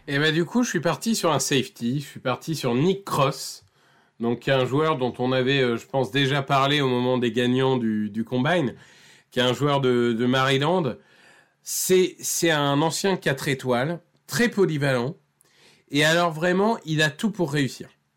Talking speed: 185 wpm